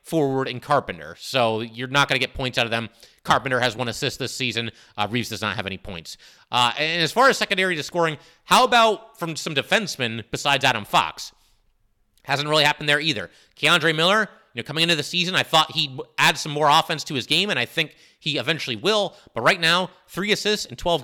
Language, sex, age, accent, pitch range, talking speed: English, male, 30-49, American, 140-185 Hz, 220 wpm